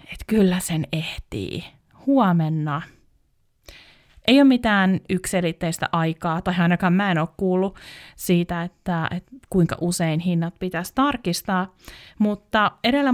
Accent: native